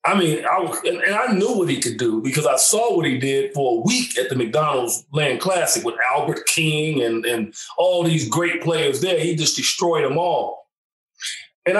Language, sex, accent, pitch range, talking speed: English, male, American, 150-180 Hz, 215 wpm